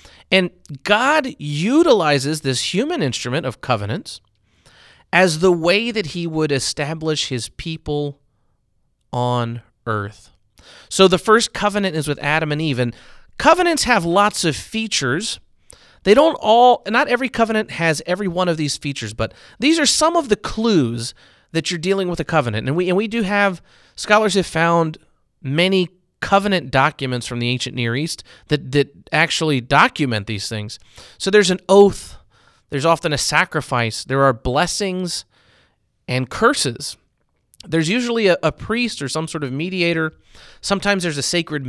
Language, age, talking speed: English, 30-49, 160 wpm